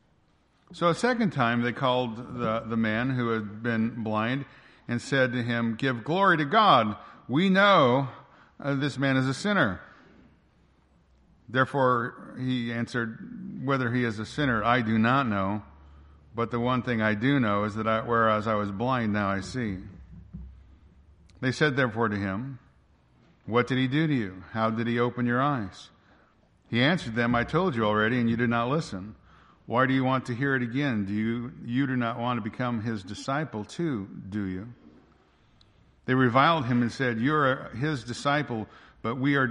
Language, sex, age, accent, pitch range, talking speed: English, male, 50-69, American, 105-135 Hz, 180 wpm